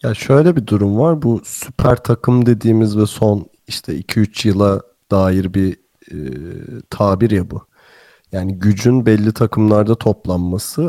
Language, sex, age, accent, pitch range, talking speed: Turkish, male, 40-59, native, 100-120 Hz, 140 wpm